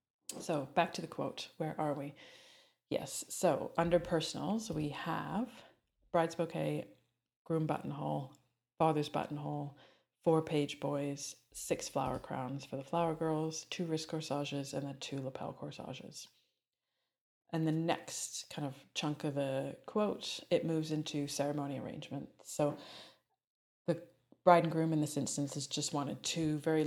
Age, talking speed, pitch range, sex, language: 30-49, 145 wpm, 140-160 Hz, female, English